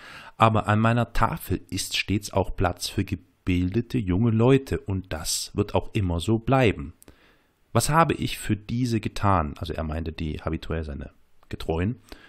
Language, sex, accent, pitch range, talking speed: German, male, German, 90-120 Hz, 155 wpm